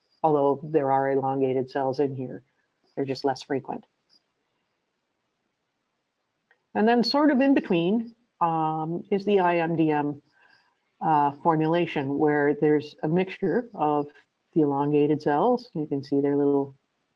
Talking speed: 125 wpm